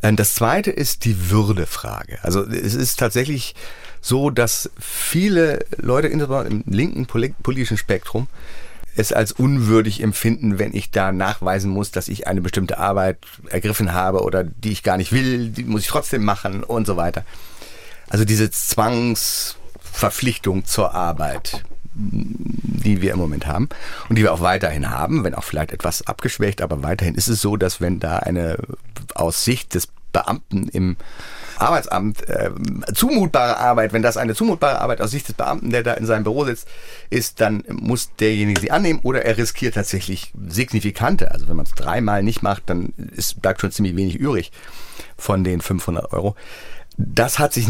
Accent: German